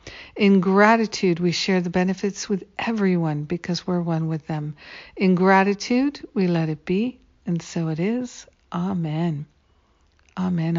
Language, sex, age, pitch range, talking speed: English, female, 60-79, 160-195 Hz, 140 wpm